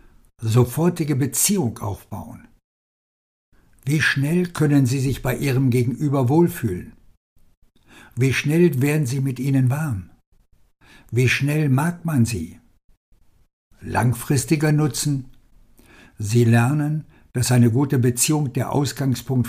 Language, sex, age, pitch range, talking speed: German, male, 60-79, 110-135 Hz, 105 wpm